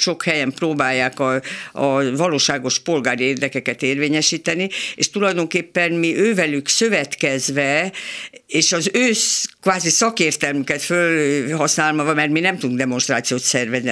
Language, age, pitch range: Hungarian, 60-79, 140-185 Hz